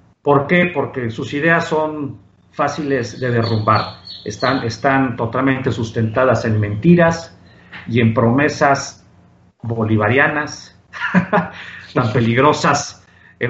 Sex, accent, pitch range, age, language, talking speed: male, Mexican, 115-150 Hz, 50-69, Spanish, 100 wpm